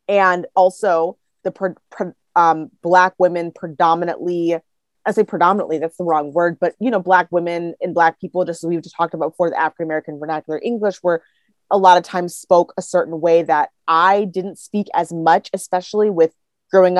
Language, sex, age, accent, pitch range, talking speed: English, female, 30-49, American, 165-205 Hz, 185 wpm